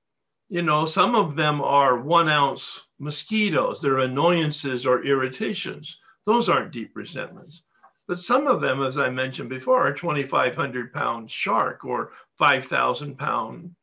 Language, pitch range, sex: English, 130-170 Hz, male